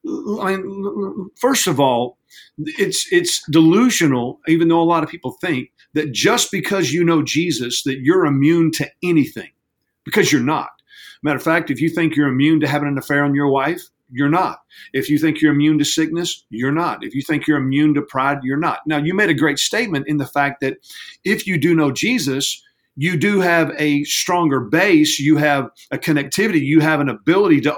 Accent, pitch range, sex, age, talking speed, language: American, 145-175 Hz, male, 50-69, 200 wpm, English